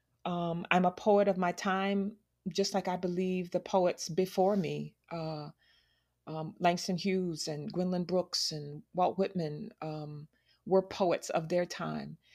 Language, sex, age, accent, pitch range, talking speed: English, female, 40-59, American, 165-195 Hz, 150 wpm